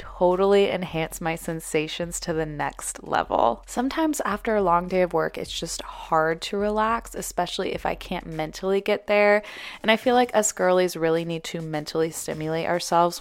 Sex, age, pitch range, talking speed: female, 20-39, 170-220 Hz, 175 wpm